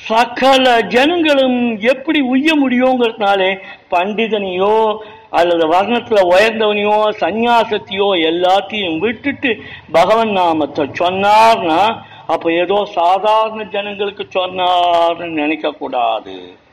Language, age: Tamil, 50-69